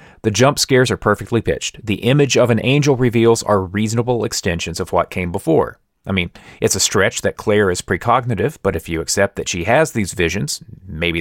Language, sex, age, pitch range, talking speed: English, male, 30-49, 95-130 Hz, 205 wpm